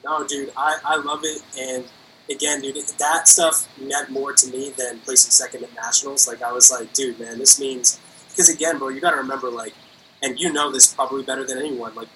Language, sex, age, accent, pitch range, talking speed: English, male, 20-39, American, 125-150 Hz, 220 wpm